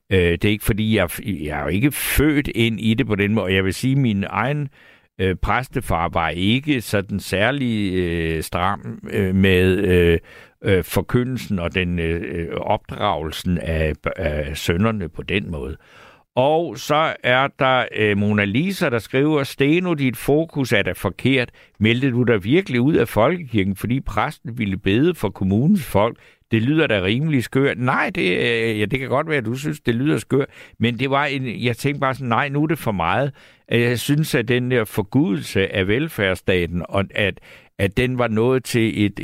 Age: 60-79